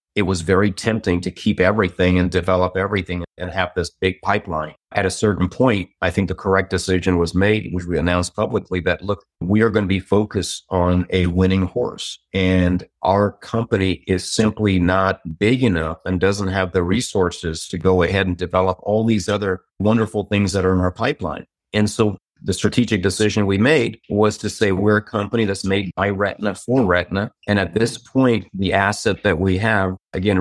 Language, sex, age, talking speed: English, male, 40-59, 195 wpm